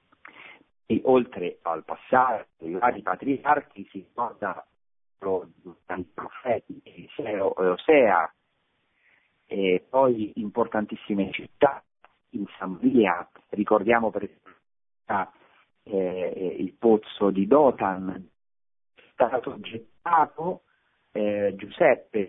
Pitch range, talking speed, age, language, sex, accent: 95-115 Hz, 80 wpm, 40-59, Italian, male, native